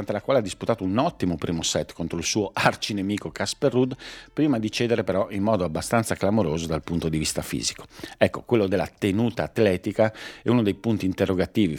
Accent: native